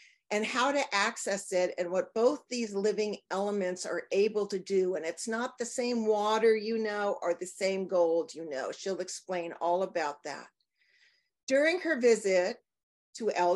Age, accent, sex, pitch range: 50-69, American, female, 190-250 Hz